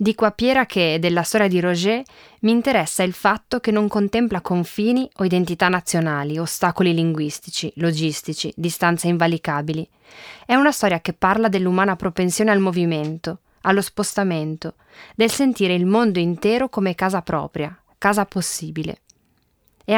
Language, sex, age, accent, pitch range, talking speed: Italian, female, 20-39, native, 170-215 Hz, 140 wpm